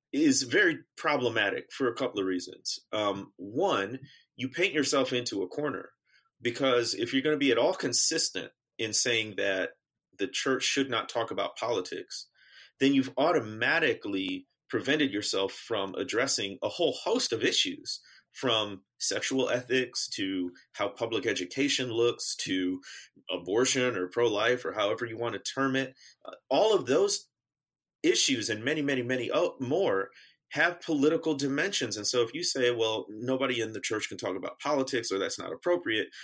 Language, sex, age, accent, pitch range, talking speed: English, male, 30-49, American, 110-155 Hz, 160 wpm